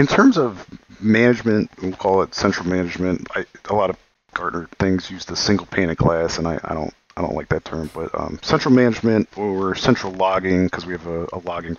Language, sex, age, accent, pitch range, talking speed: English, male, 40-59, American, 85-105 Hz, 220 wpm